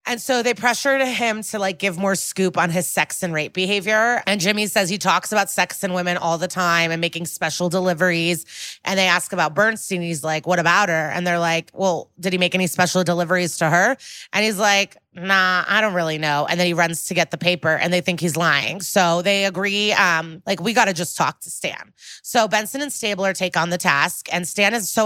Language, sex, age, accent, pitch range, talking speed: English, female, 30-49, American, 165-205 Hz, 235 wpm